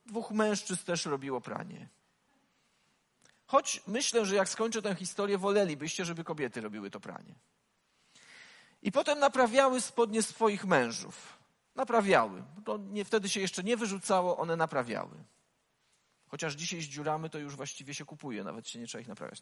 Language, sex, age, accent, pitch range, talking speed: Polish, male, 40-59, native, 185-235 Hz, 150 wpm